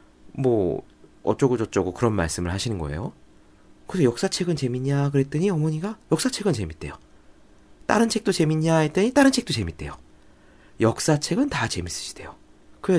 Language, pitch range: Korean, 85-130 Hz